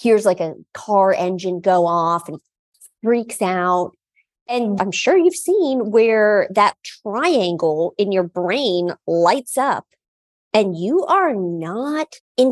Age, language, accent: 40-59, English, American